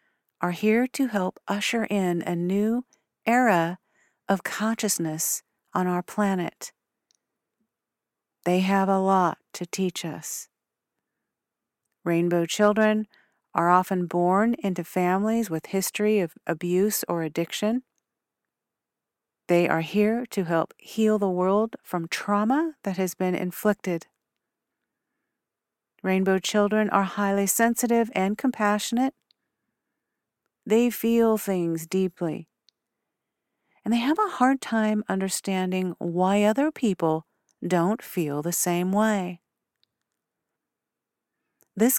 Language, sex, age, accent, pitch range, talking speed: English, female, 50-69, American, 175-225 Hz, 105 wpm